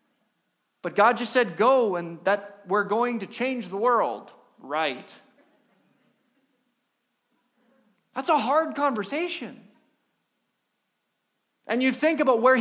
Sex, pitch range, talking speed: male, 195-265 Hz, 110 wpm